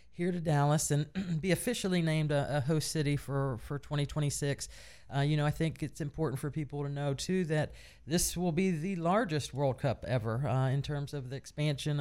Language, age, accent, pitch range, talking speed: English, 40-59, American, 125-150 Hz, 205 wpm